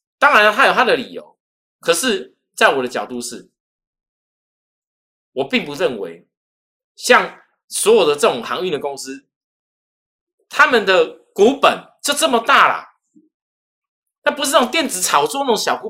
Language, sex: Chinese, male